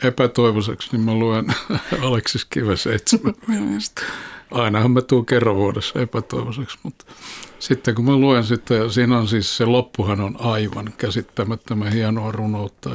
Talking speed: 130 wpm